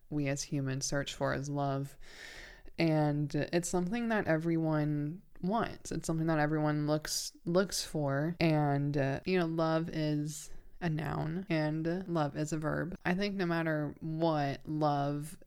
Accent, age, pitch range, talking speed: American, 20-39, 145-165 Hz, 150 wpm